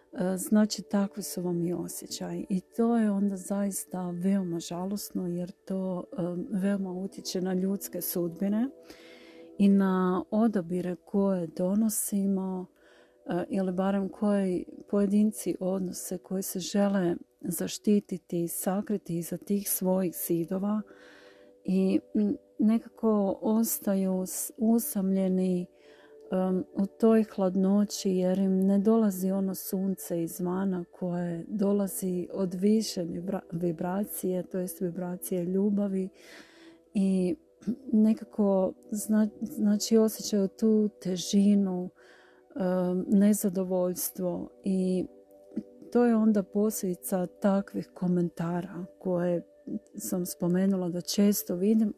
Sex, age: female, 40-59